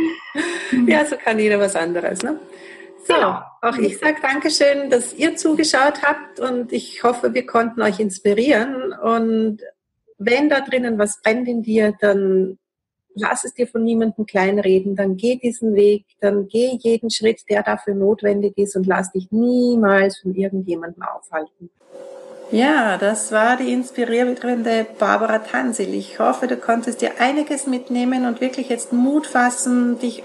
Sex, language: female, German